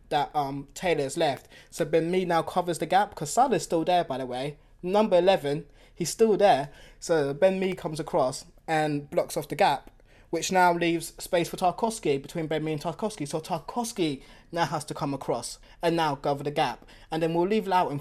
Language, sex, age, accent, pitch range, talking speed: English, male, 20-39, British, 145-185 Hz, 205 wpm